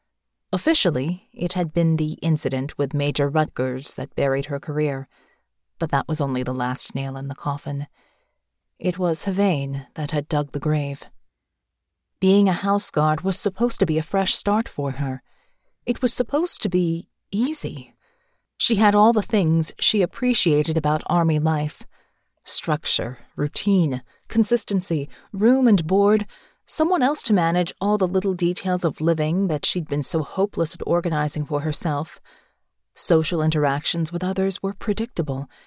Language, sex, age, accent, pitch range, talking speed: English, female, 30-49, American, 145-195 Hz, 155 wpm